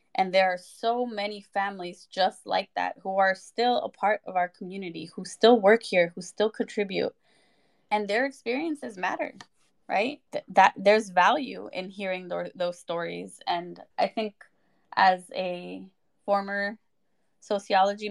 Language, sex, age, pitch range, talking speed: English, female, 20-39, 180-215 Hz, 145 wpm